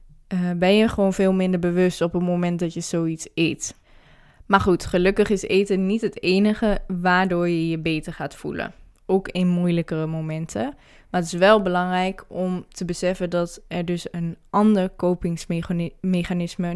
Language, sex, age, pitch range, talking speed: Dutch, female, 20-39, 170-195 Hz, 165 wpm